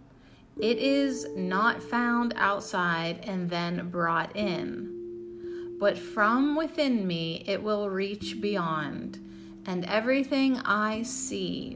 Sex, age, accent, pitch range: female, 30-49, American, 155-210 Hz